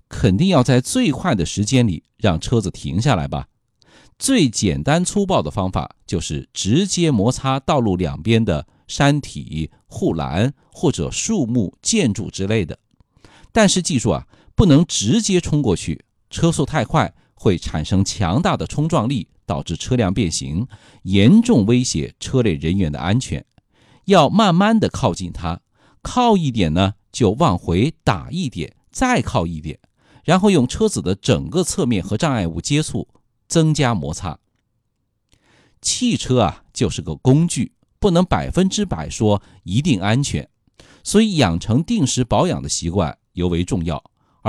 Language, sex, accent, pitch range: Chinese, male, native, 90-140 Hz